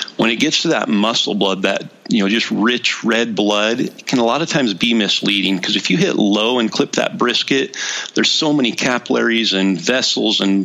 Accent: American